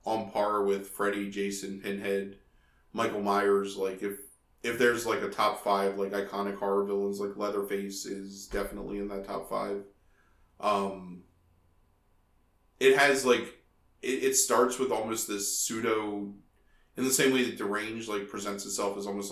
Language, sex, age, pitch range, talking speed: English, male, 20-39, 100-110 Hz, 155 wpm